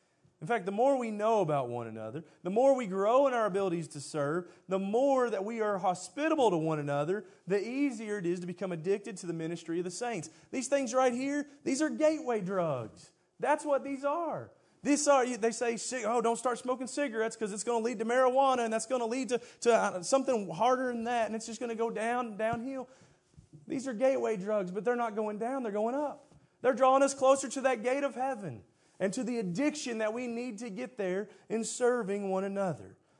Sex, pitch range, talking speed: male, 150-235 Hz, 220 wpm